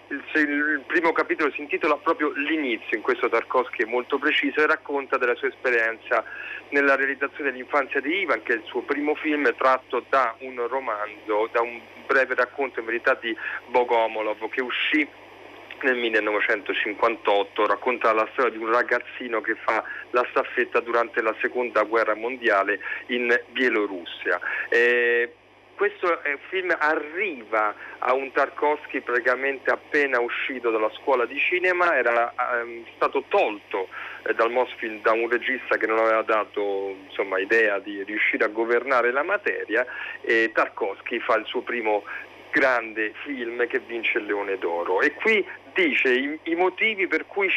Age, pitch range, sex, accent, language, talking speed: 40-59, 115-160 Hz, male, native, Italian, 150 wpm